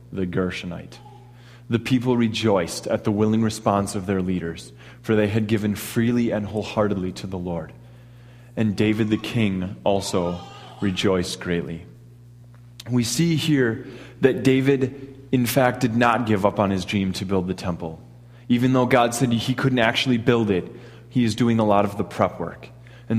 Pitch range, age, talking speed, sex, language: 100-125 Hz, 30-49, 170 wpm, male, English